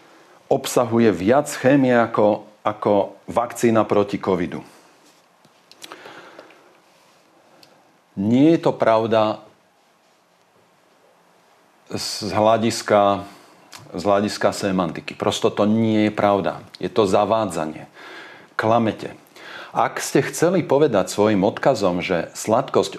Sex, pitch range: male, 100-120 Hz